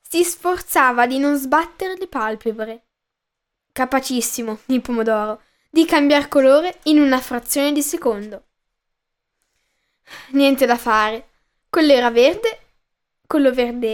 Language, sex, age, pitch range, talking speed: Italian, female, 10-29, 245-305 Hz, 110 wpm